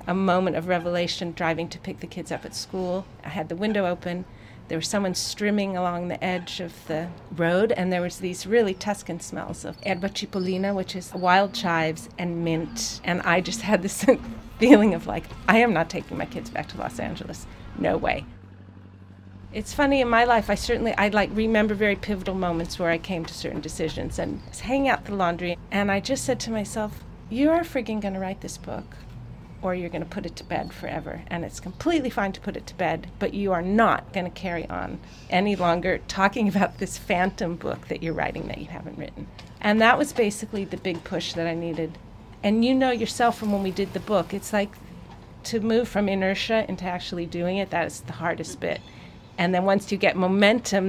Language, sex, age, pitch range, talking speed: English, female, 40-59, 170-205 Hz, 210 wpm